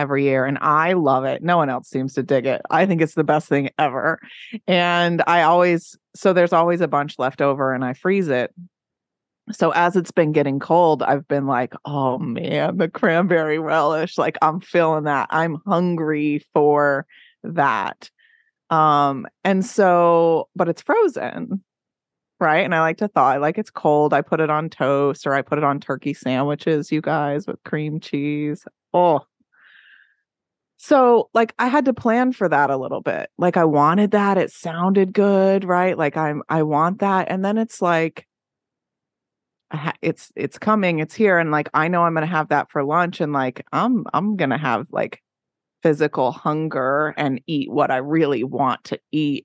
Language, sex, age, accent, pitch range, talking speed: English, female, 30-49, American, 145-185 Hz, 185 wpm